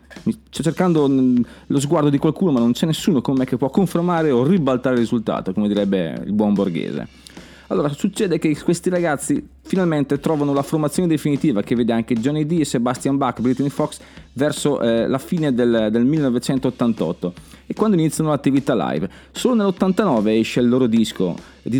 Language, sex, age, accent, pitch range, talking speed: Italian, male, 30-49, native, 115-160 Hz, 170 wpm